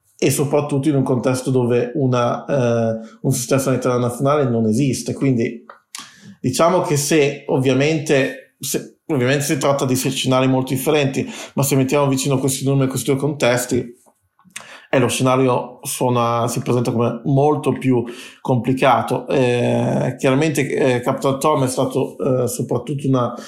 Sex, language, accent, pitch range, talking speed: male, Italian, native, 125-140 Hz, 140 wpm